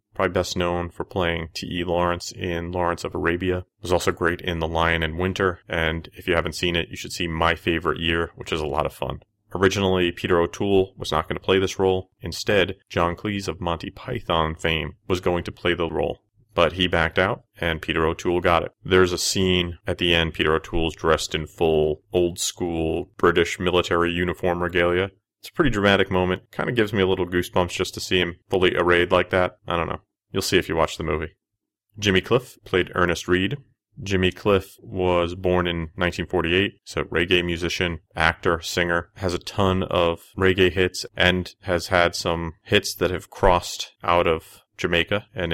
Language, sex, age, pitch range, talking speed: English, male, 30-49, 85-95 Hz, 200 wpm